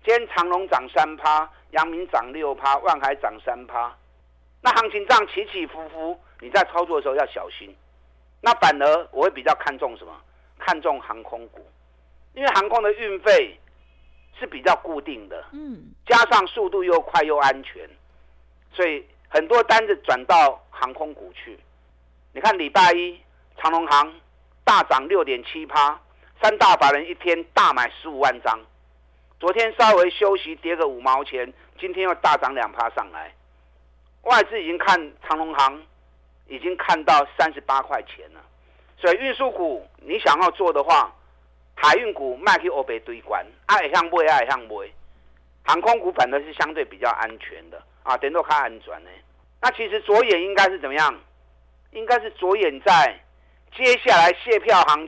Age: 50-69